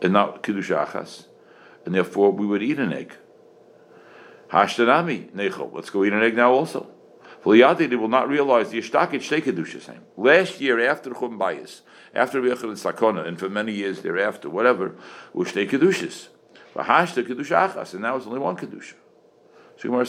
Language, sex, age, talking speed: English, male, 60-79, 165 wpm